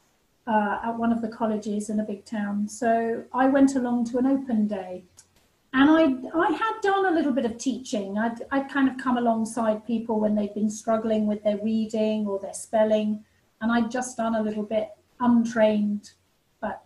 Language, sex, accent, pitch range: English, female, British, 215-250 Hz